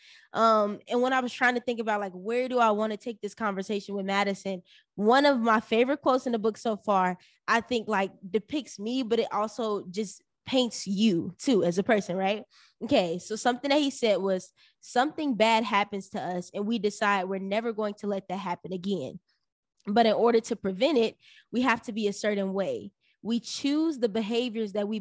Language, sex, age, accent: English, female, 10-29, American